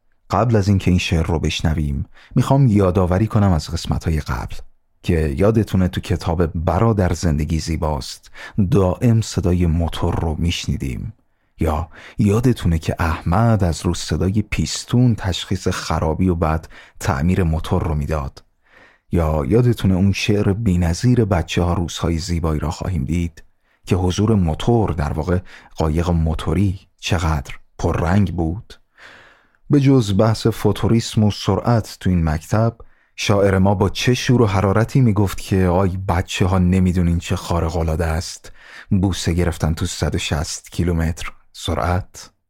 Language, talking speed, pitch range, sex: Persian, 140 wpm, 80-105 Hz, male